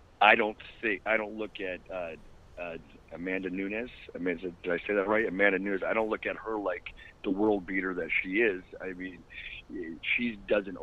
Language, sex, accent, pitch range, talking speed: English, male, American, 90-110 Hz, 195 wpm